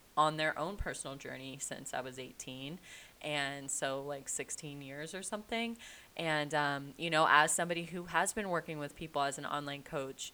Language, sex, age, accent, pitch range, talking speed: English, female, 20-39, American, 145-180 Hz, 185 wpm